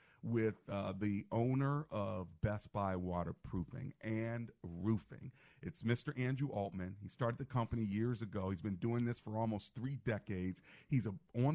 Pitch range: 105-135 Hz